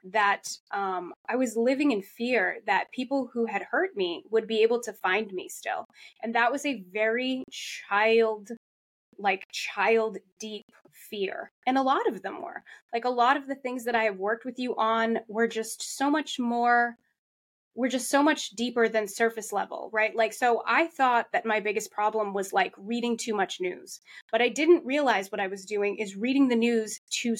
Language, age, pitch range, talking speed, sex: English, 20-39, 210-255 Hz, 195 wpm, female